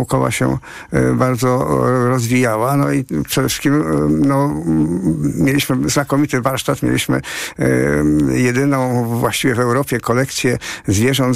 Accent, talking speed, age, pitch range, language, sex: native, 115 wpm, 50-69, 125-140 Hz, Polish, male